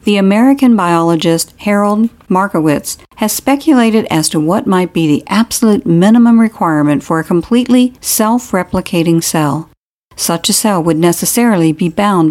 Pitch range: 165-225 Hz